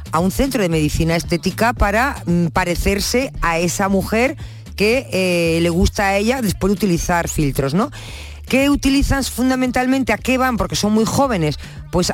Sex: female